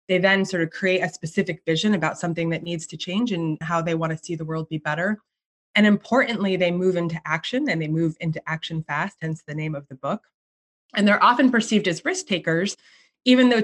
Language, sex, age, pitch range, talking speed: English, female, 20-39, 165-210 Hz, 225 wpm